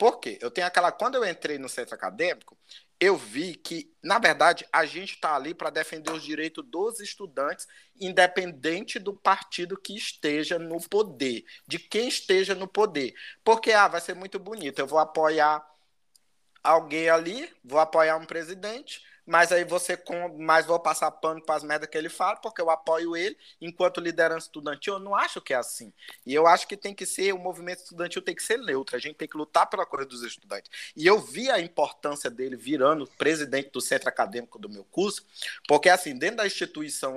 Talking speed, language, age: 190 wpm, Portuguese, 20-39